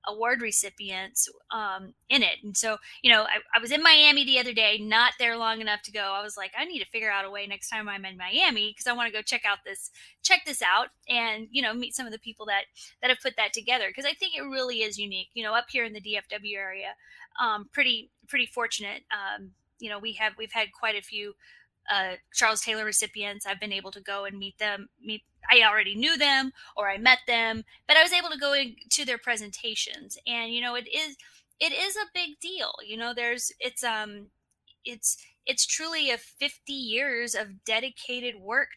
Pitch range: 210-255 Hz